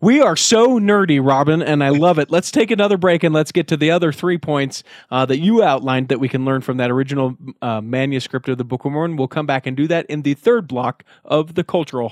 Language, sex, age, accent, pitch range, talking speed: English, male, 30-49, American, 125-175 Hz, 255 wpm